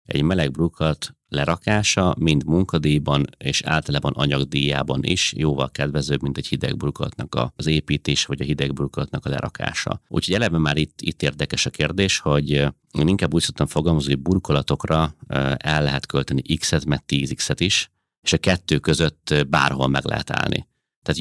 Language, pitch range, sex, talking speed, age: Hungarian, 70-85 Hz, male, 155 wpm, 30-49